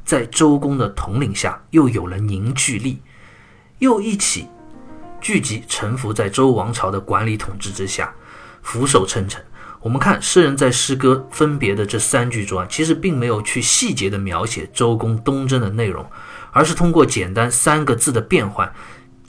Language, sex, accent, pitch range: Chinese, male, native, 105-160 Hz